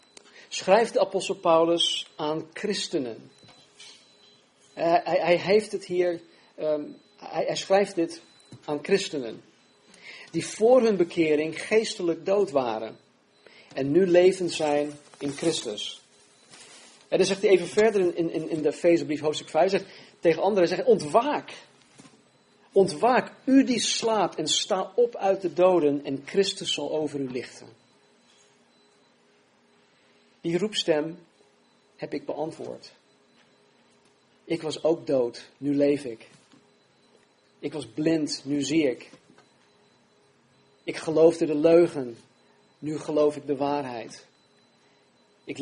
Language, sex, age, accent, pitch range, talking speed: Dutch, male, 40-59, Dutch, 145-185 Hz, 125 wpm